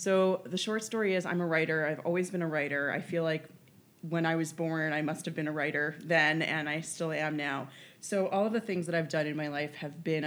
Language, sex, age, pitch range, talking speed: English, female, 20-39, 145-170 Hz, 265 wpm